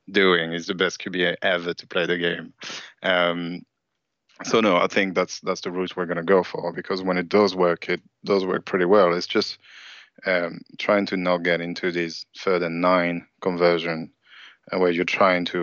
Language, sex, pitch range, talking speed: English, male, 85-95 Hz, 195 wpm